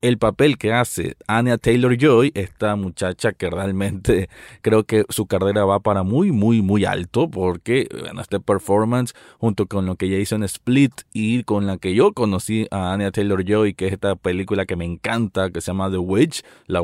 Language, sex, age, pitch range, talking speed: Spanish, male, 20-39, 100-125 Hz, 195 wpm